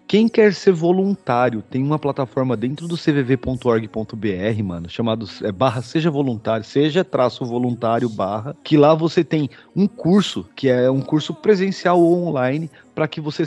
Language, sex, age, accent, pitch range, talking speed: Portuguese, male, 30-49, Brazilian, 120-160 Hz, 160 wpm